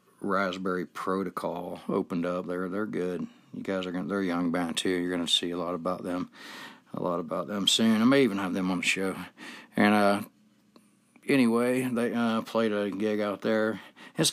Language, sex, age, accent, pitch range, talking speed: English, male, 60-79, American, 90-105 Hz, 195 wpm